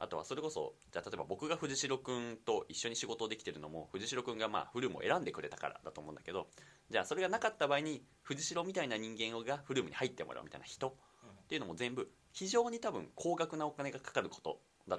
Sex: male